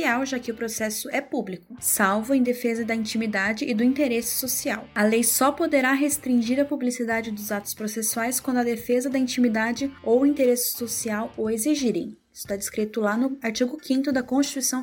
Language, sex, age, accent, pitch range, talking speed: Portuguese, female, 10-29, Brazilian, 230-275 Hz, 180 wpm